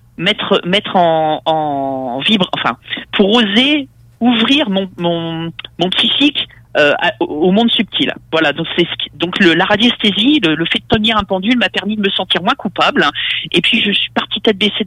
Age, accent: 40-59, French